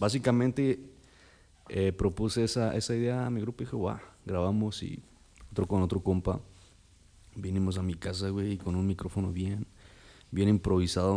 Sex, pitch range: male, 90-105 Hz